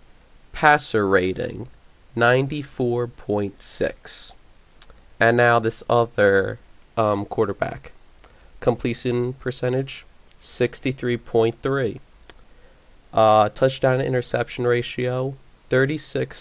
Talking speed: 65 wpm